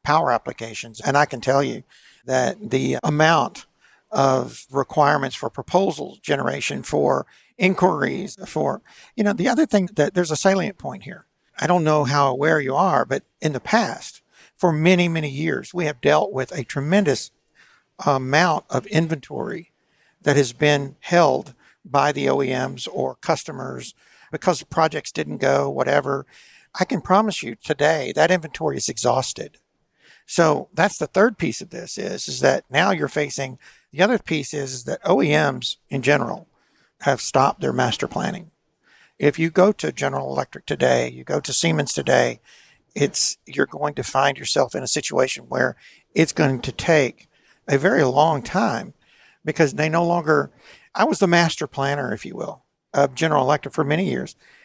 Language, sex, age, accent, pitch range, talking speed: English, male, 60-79, American, 140-175 Hz, 165 wpm